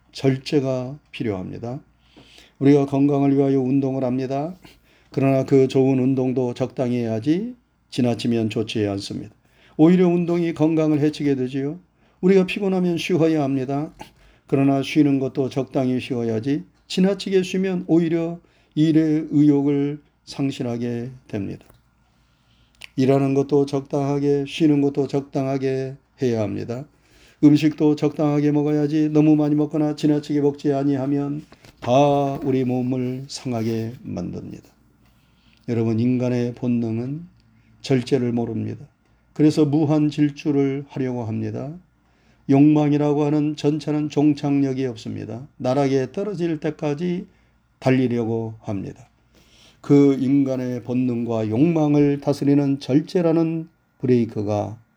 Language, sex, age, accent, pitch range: Korean, male, 40-59, native, 125-150 Hz